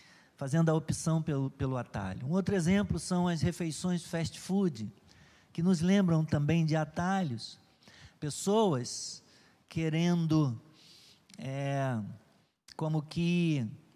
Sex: male